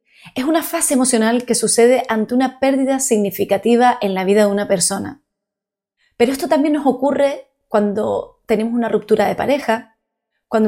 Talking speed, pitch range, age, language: 155 wpm, 205-265 Hz, 30-49, Spanish